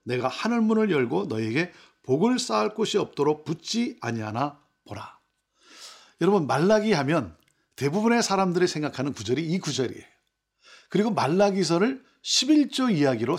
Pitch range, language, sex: 150-250 Hz, Korean, male